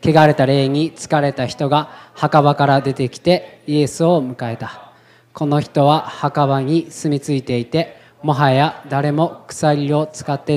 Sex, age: male, 20-39